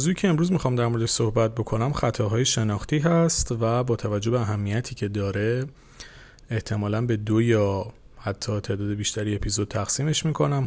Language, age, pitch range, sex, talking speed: Persian, 30-49, 105-125 Hz, male, 155 wpm